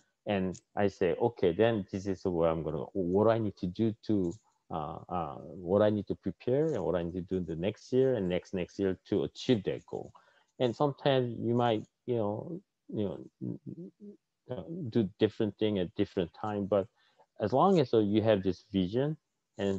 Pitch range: 95-115 Hz